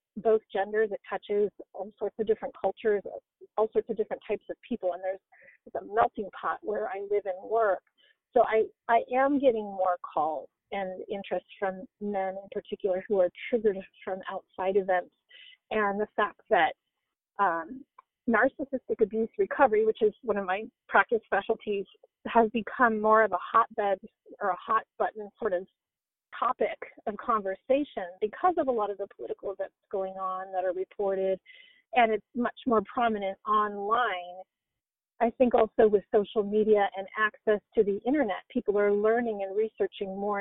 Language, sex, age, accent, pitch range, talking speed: English, female, 40-59, American, 195-245 Hz, 165 wpm